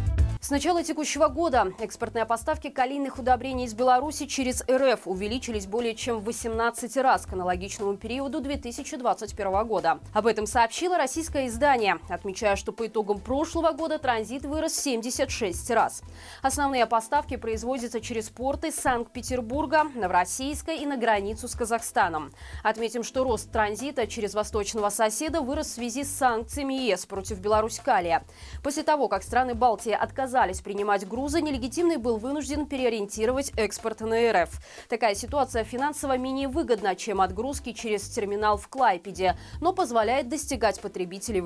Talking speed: 140 wpm